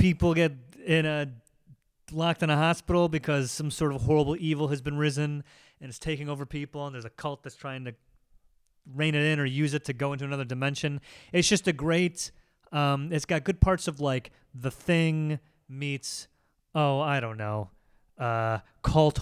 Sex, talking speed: male, 185 wpm